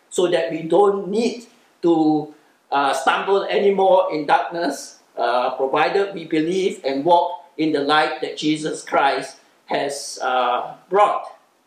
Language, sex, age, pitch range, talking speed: English, male, 50-69, 155-230 Hz, 135 wpm